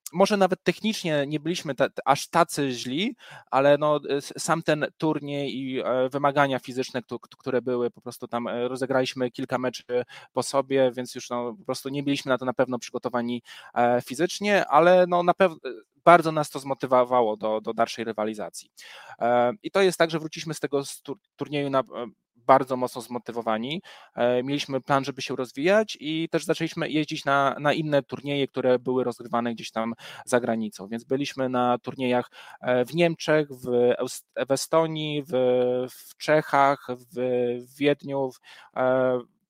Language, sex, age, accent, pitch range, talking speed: Polish, male, 20-39, native, 125-155 Hz, 155 wpm